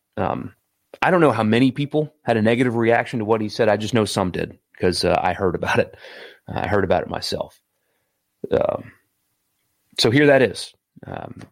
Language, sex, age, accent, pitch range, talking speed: English, male, 30-49, American, 95-110 Hz, 195 wpm